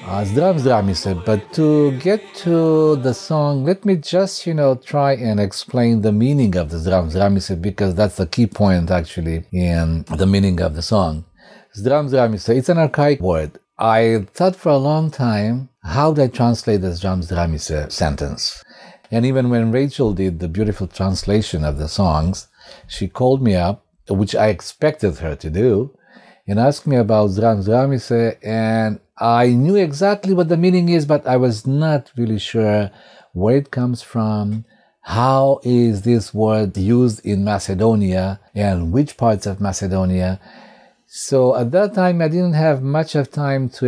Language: English